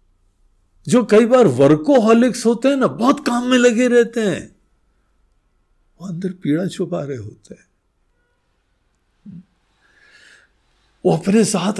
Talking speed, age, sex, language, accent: 115 wpm, 60-79, male, Hindi, native